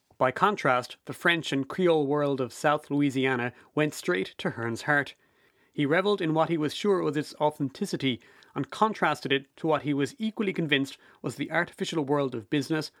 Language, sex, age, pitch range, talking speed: English, male, 30-49, 130-170 Hz, 185 wpm